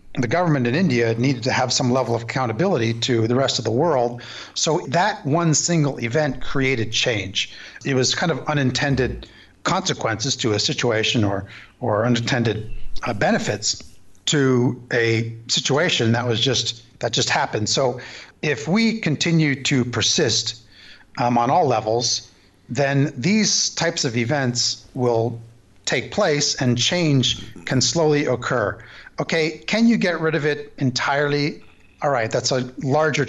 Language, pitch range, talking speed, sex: English, 115-150 Hz, 150 wpm, male